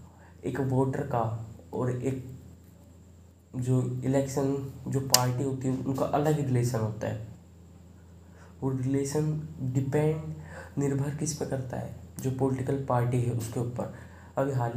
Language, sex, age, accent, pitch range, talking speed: Hindi, male, 20-39, native, 115-140 Hz, 135 wpm